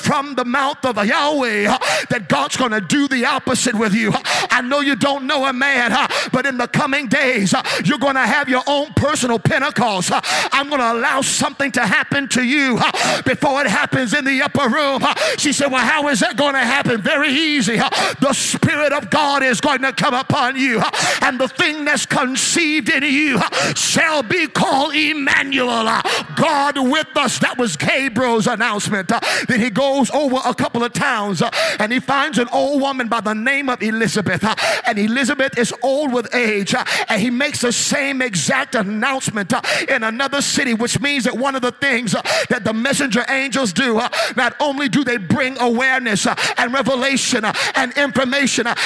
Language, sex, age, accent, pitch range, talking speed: English, male, 50-69, American, 235-280 Hz, 180 wpm